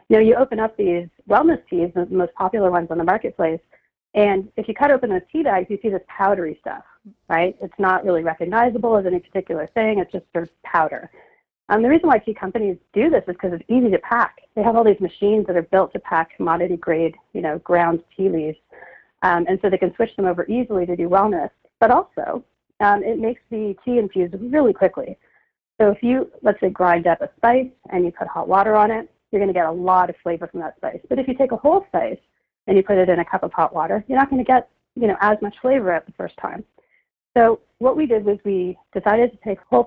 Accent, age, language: American, 40-59, English